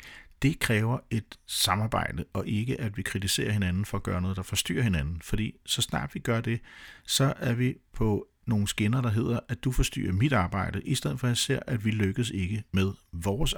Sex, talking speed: male, 210 wpm